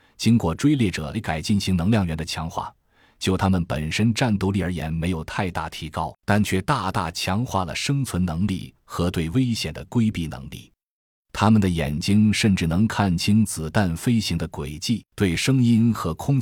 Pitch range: 80-105 Hz